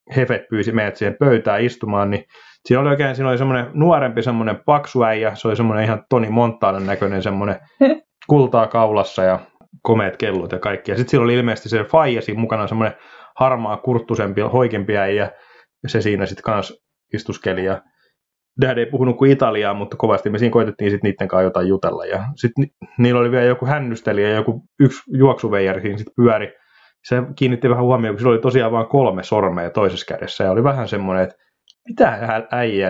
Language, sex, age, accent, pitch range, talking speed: Finnish, male, 30-49, native, 100-130 Hz, 180 wpm